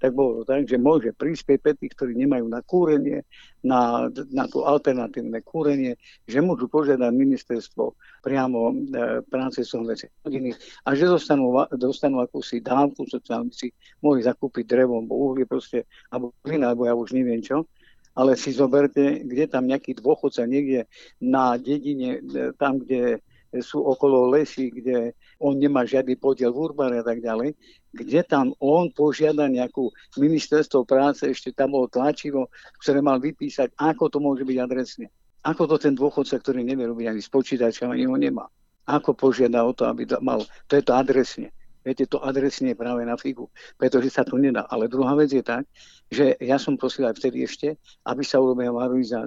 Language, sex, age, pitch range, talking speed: Slovak, male, 50-69, 125-145 Hz, 165 wpm